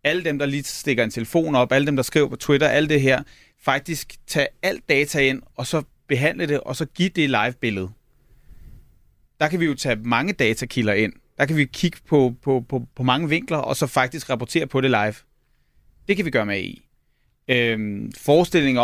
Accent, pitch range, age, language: native, 115-140 Hz, 30-49, Danish